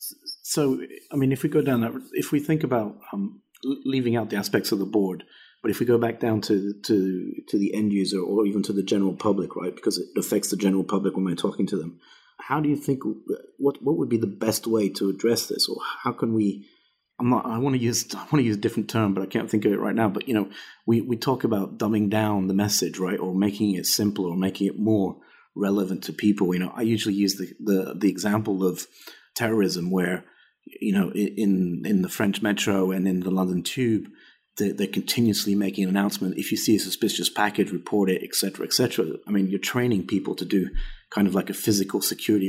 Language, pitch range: English, 95-115 Hz